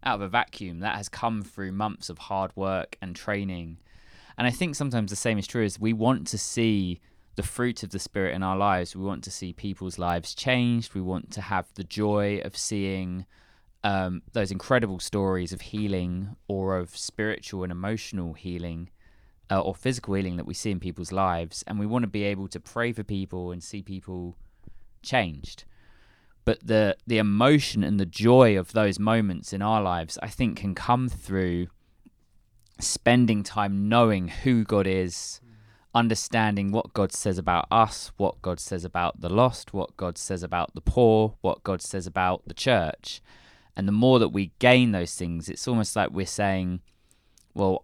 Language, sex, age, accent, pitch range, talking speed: English, male, 20-39, British, 90-110 Hz, 185 wpm